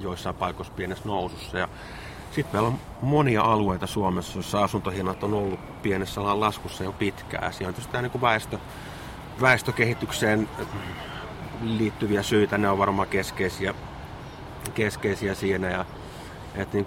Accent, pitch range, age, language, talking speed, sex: native, 95-110 Hz, 30-49, Finnish, 120 wpm, male